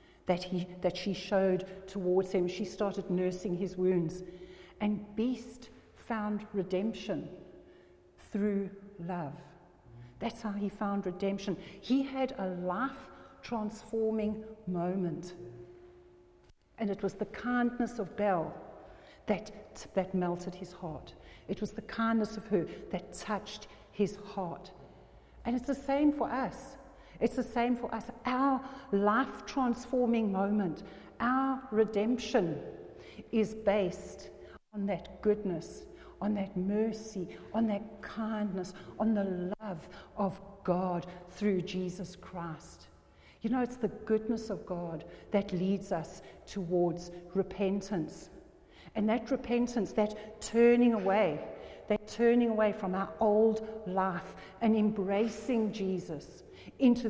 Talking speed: 120 wpm